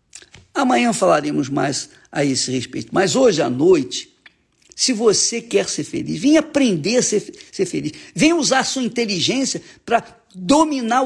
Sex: male